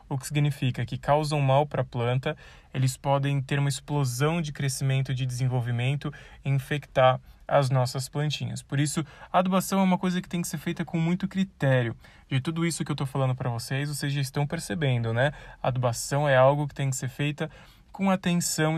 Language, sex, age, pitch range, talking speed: Portuguese, male, 20-39, 135-165 Hz, 200 wpm